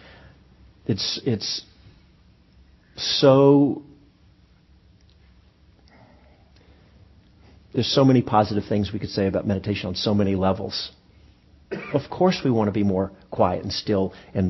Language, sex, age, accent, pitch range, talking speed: English, male, 50-69, American, 95-120 Hz, 115 wpm